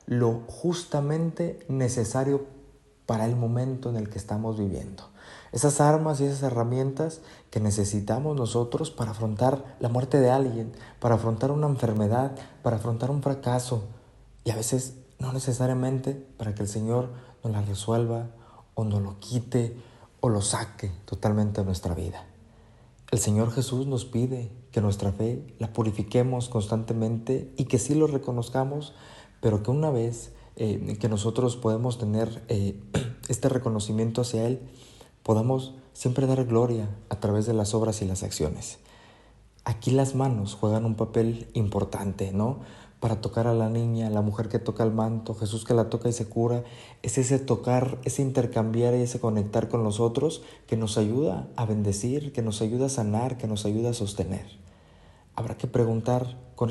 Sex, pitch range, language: male, 110-130 Hz, Spanish